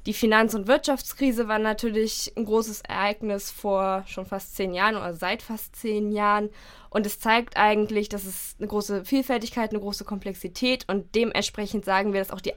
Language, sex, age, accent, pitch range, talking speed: German, female, 10-29, German, 195-220 Hz, 180 wpm